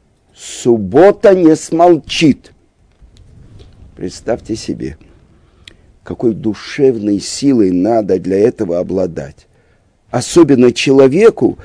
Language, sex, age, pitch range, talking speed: Russian, male, 50-69, 105-165 Hz, 70 wpm